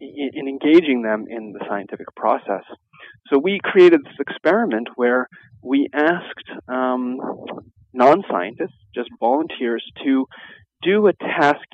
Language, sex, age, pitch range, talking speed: English, male, 30-49, 115-140 Hz, 120 wpm